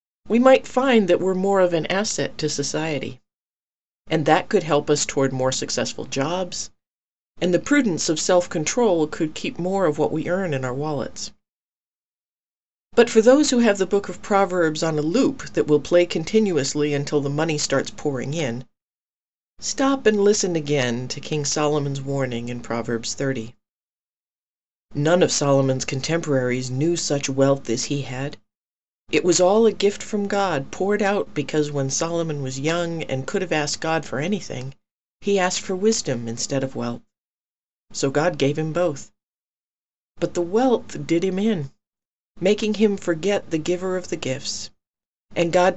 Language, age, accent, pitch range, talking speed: English, 40-59, American, 135-190 Hz, 165 wpm